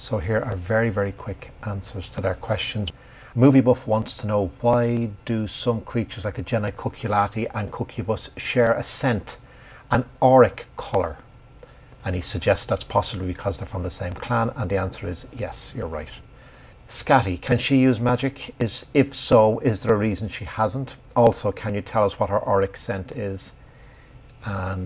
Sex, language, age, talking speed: male, English, 60-79, 175 wpm